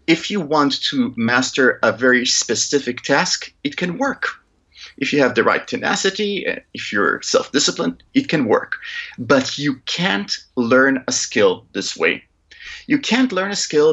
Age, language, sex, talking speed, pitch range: 30-49, English, male, 160 wpm, 130-210 Hz